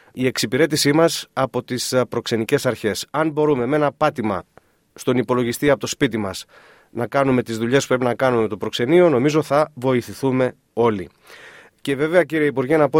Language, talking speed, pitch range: Greek, 180 wpm, 115-140 Hz